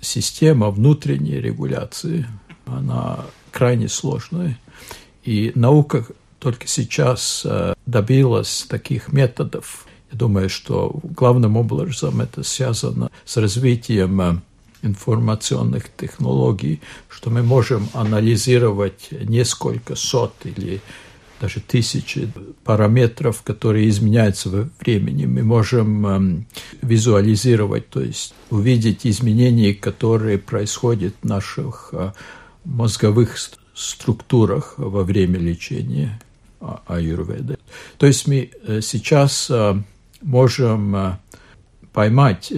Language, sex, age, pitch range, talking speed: Russian, male, 60-79, 100-125 Hz, 85 wpm